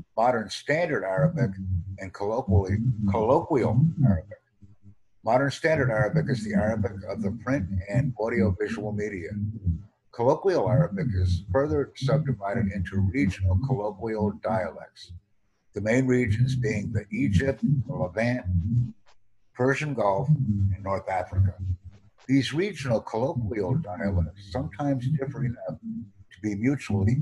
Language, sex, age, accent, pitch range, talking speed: English, male, 60-79, American, 100-125 Hz, 110 wpm